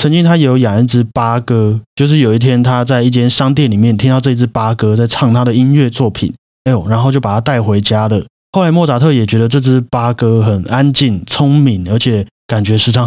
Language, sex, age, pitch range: Chinese, male, 30-49, 110-135 Hz